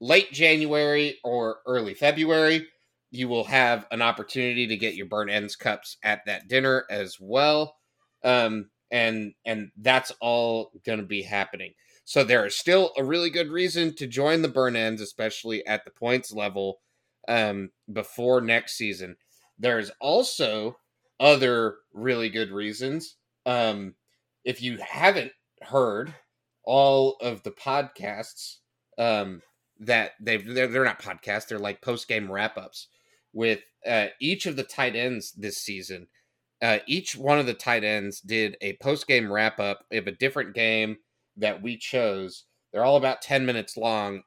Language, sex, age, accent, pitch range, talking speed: English, male, 30-49, American, 105-135 Hz, 150 wpm